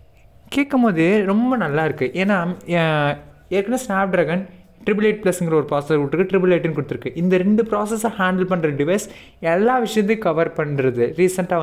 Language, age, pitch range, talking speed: Tamil, 20-39, 150-205 Hz, 135 wpm